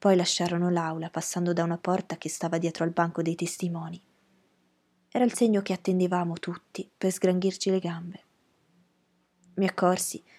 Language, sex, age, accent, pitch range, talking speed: Italian, female, 20-39, native, 170-195 Hz, 150 wpm